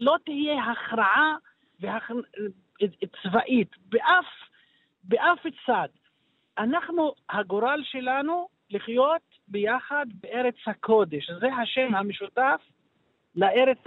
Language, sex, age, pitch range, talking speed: Hebrew, male, 50-69, 225-285 Hz, 80 wpm